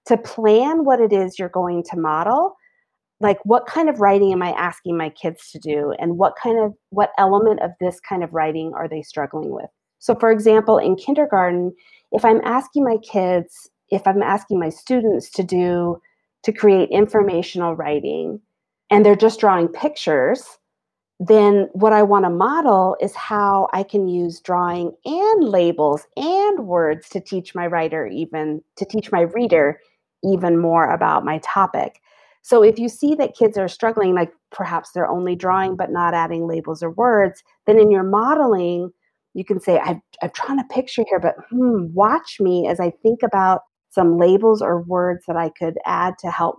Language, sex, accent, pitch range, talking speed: English, female, American, 175-220 Hz, 180 wpm